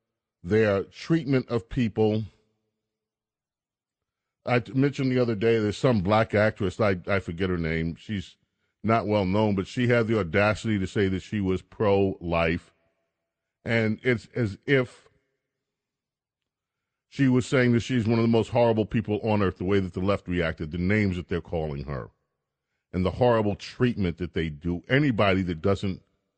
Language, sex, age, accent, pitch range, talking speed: English, male, 40-59, American, 95-120 Hz, 165 wpm